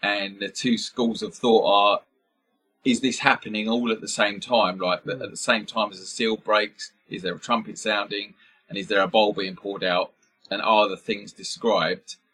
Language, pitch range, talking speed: English, 95-115 Hz, 205 wpm